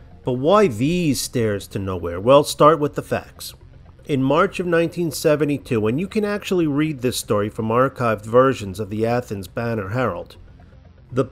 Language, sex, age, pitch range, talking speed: English, male, 40-59, 110-150 Hz, 165 wpm